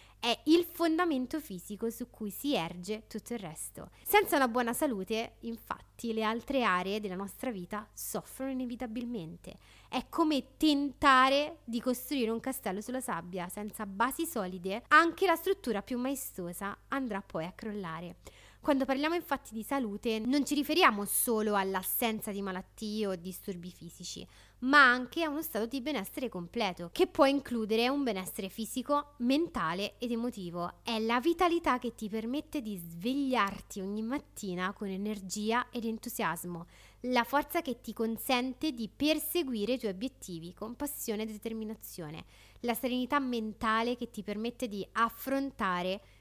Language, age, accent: Italian, 20-39, native